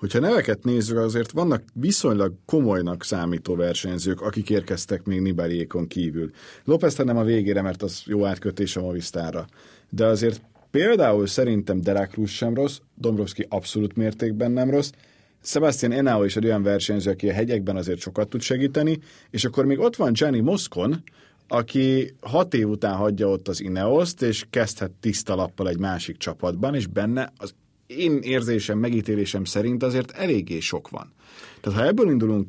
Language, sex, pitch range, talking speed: Hungarian, male, 100-120 Hz, 160 wpm